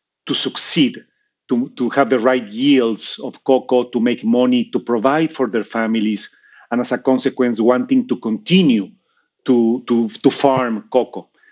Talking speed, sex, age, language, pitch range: 155 wpm, male, 40-59, English, 120-150 Hz